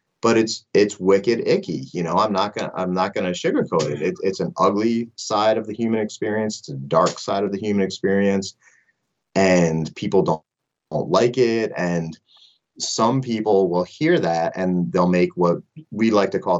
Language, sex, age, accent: English, male, 30-49, American